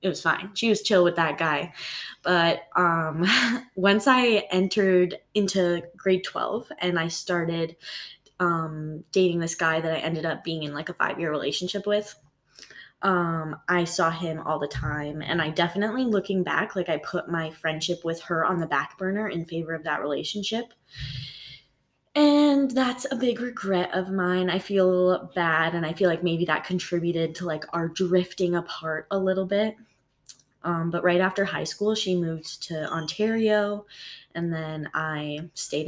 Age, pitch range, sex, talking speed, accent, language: 10-29, 160-190 Hz, female, 170 wpm, American, English